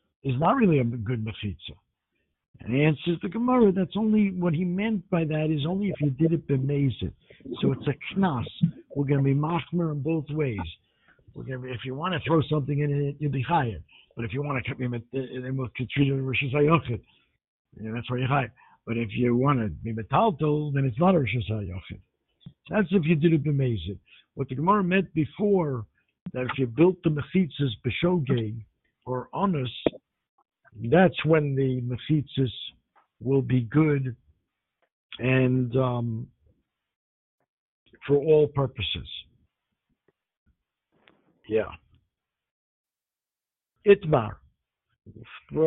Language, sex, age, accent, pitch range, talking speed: English, male, 60-79, American, 120-170 Hz, 145 wpm